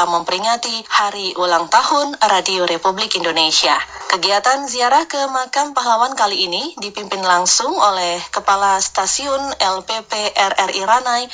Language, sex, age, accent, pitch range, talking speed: Indonesian, female, 20-39, native, 190-270 Hz, 115 wpm